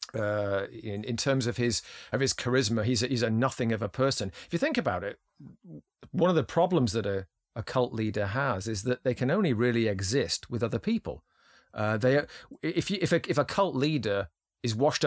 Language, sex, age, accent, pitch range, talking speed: English, male, 40-59, British, 110-135 Hz, 220 wpm